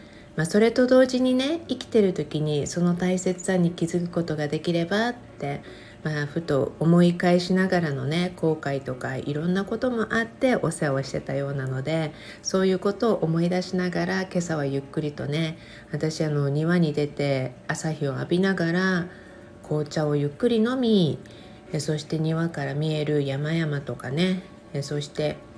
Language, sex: Japanese, female